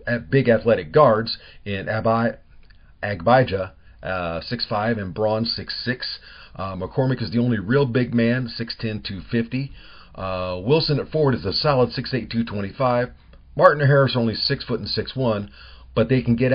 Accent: American